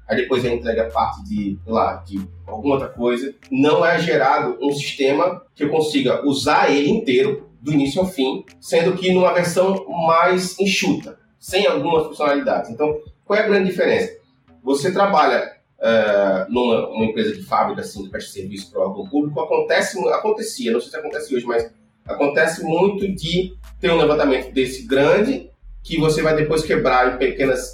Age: 30-49